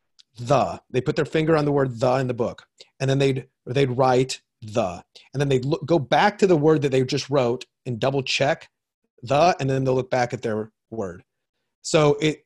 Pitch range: 115-145 Hz